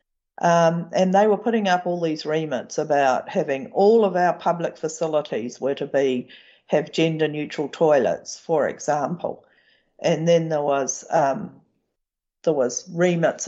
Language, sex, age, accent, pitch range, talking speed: English, female, 50-69, Australian, 145-180 Hz, 140 wpm